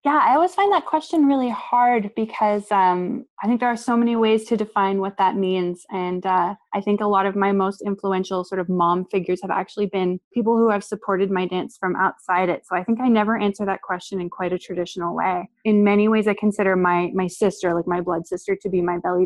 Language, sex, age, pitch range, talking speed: French, female, 20-39, 185-220 Hz, 240 wpm